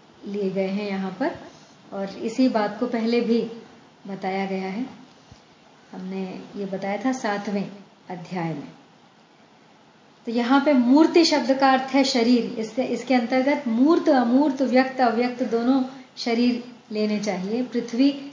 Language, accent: Hindi, native